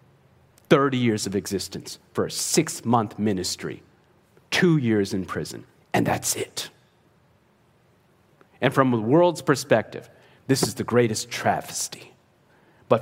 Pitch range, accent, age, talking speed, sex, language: 110-135 Hz, American, 50-69, 120 wpm, male, English